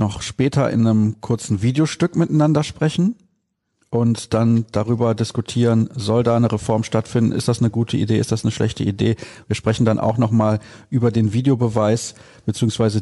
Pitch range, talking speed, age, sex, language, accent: 115-140 Hz, 170 wpm, 40-59, male, German, German